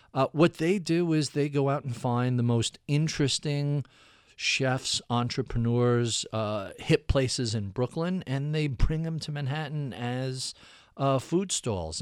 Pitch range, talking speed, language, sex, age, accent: 120-145 Hz, 150 wpm, English, male, 50-69, American